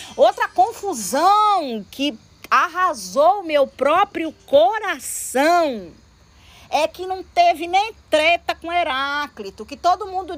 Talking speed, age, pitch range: 115 wpm, 40-59, 270-355 Hz